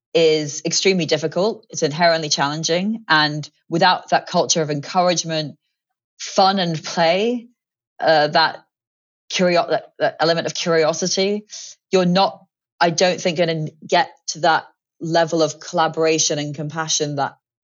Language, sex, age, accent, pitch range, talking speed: English, female, 30-49, British, 140-165 Hz, 130 wpm